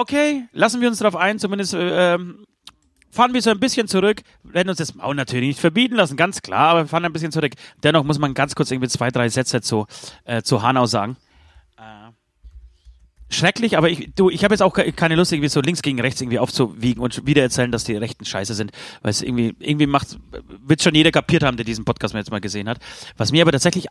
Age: 30-49